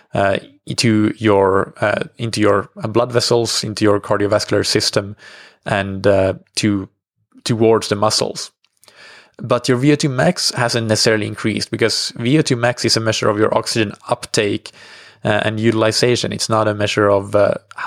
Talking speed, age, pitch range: 140 wpm, 20-39, 110-130 Hz